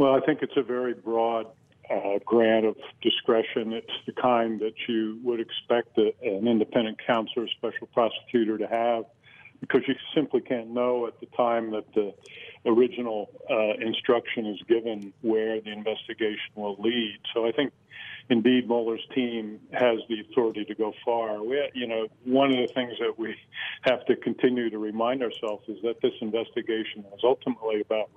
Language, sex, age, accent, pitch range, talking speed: English, male, 50-69, American, 110-125 Hz, 170 wpm